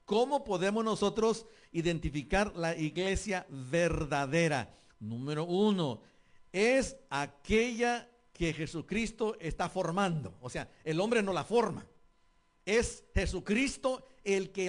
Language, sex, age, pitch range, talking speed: English, male, 50-69, 160-210 Hz, 105 wpm